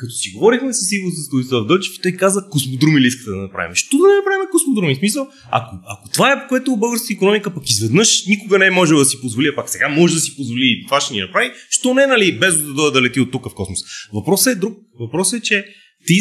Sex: male